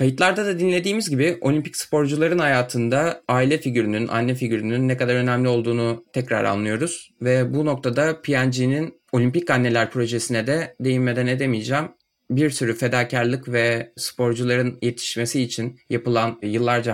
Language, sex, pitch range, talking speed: Turkish, male, 120-140 Hz, 130 wpm